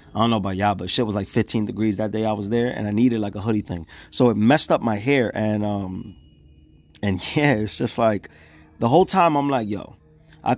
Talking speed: 240 wpm